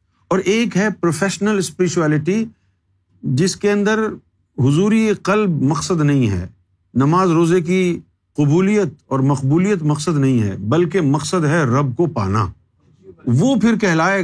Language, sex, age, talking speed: Urdu, male, 50-69, 130 wpm